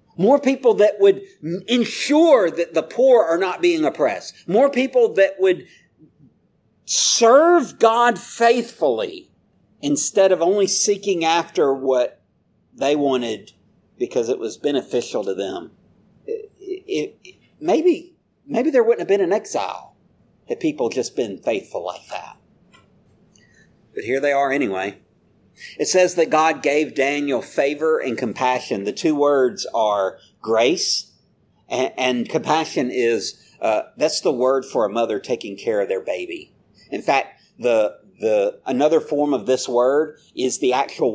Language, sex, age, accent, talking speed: English, male, 50-69, American, 145 wpm